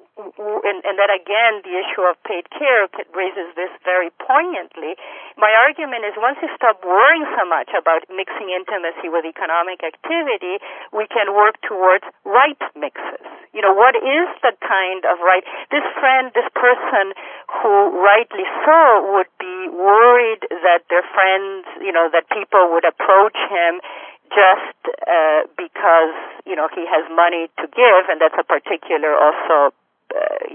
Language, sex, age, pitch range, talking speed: English, female, 40-59, 180-240 Hz, 150 wpm